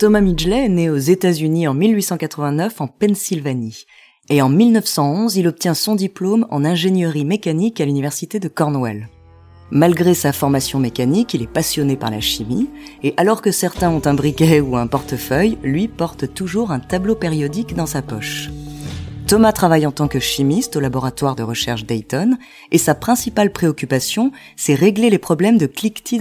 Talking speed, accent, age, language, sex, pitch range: 170 wpm, French, 20-39, French, female, 135-200 Hz